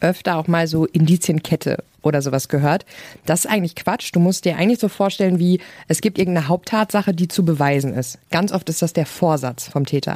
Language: German